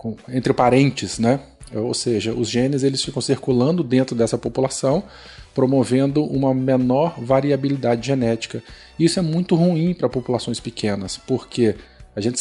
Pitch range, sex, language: 115-145 Hz, male, Portuguese